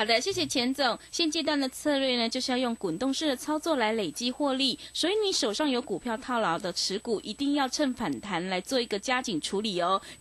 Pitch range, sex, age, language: 210-295 Hz, female, 20-39, Chinese